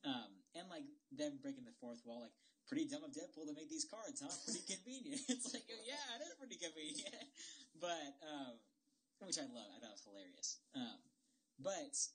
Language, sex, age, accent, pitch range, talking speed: English, male, 20-39, American, 240-280 Hz, 200 wpm